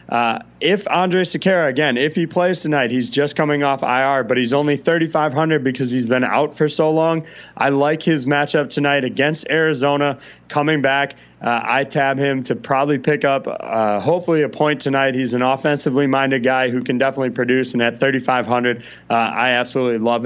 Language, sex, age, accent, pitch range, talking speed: English, male, 30-49, American, 125-145 Hz, 185 wpm